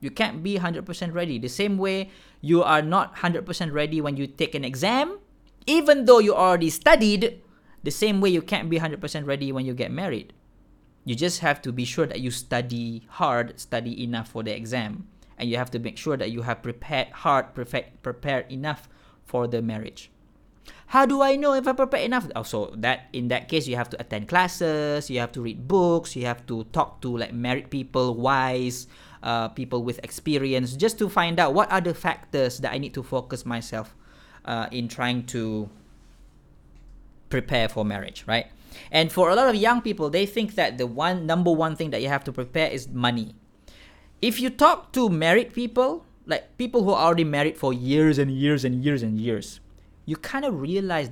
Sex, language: male, Malay